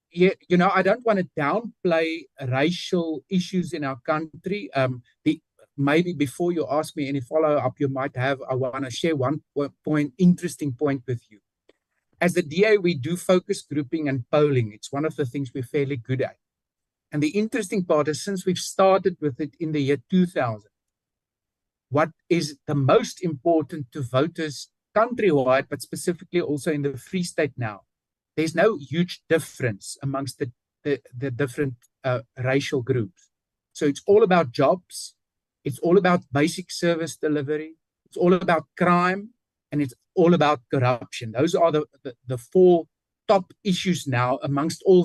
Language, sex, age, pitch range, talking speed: English, male, 60-79, 135-175 Hz, 165 wpm